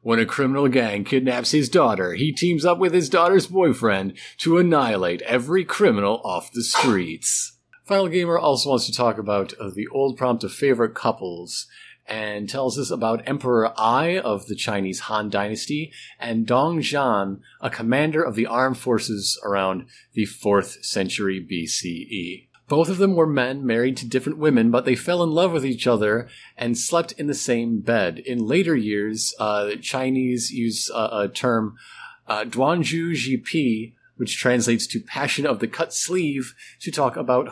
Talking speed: 170 wpm